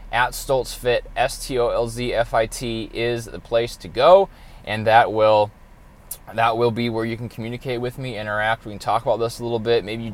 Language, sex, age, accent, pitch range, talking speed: English, male, 20-39, American, 110-140 Hz, 185 wpm